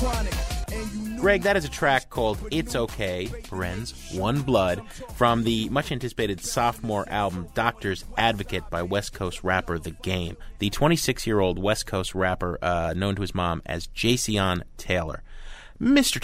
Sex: male